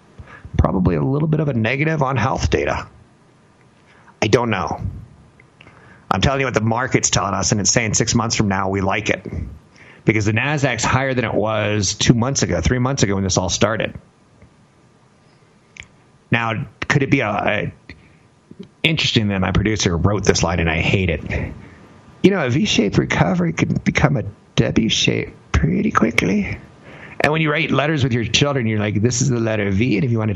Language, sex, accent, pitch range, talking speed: English, male, American, 100-145 Hz, 190 wpm